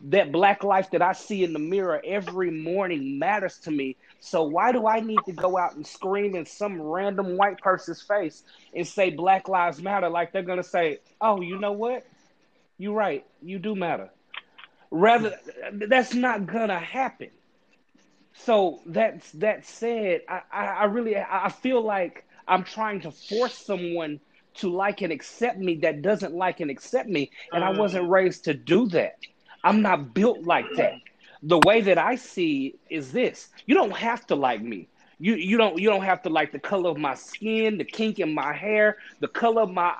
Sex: male